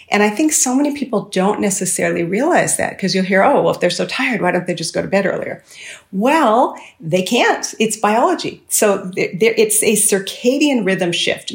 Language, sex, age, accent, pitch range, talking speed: English, female, 40-59, American, 180-225 Hz, 195 wpm